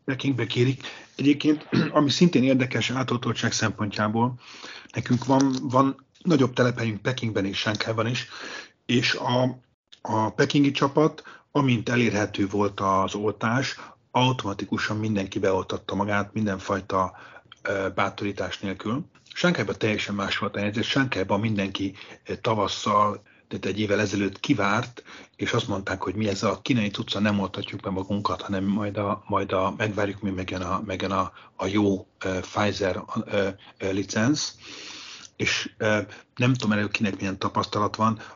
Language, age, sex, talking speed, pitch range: Hungarian, 30-49, male, 135 wpm, 100-120 Hz